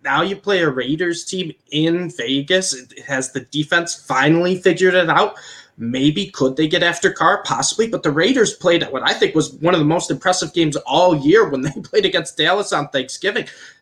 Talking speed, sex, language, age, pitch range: 200 wpm, male, English, 20-39, 130-175 Hz